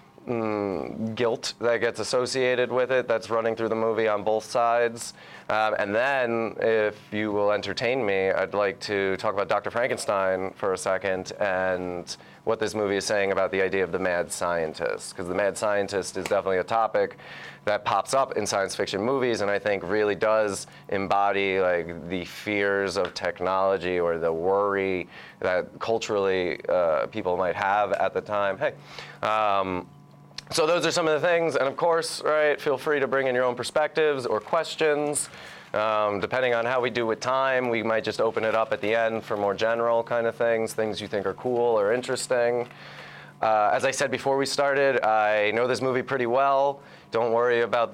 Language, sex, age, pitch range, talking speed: English, male, 30-49, 100-125 Hz, 190 wpm